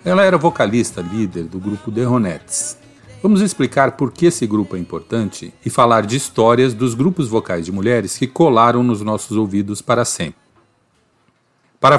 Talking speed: 165 wpm